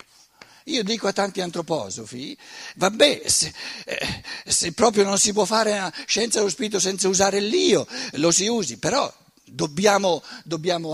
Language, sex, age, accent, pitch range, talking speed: Italian, male, 60-79, native, 145-215 Hz, 145 wpm